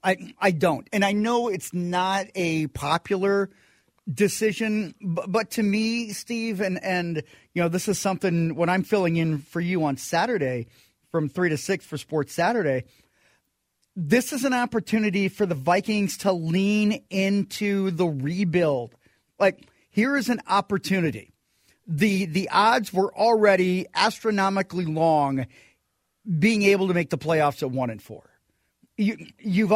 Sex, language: male, English